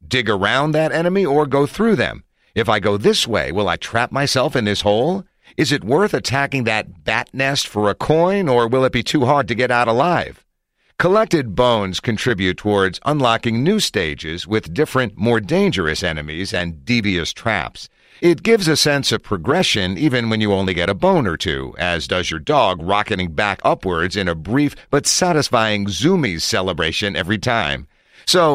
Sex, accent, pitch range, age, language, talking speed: male, American, 95-140 Hz, 50-69, English, 185 wpm